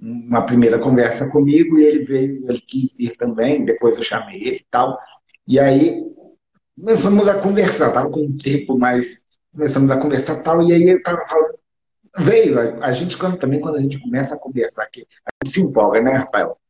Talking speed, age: 190 wpm, 50-69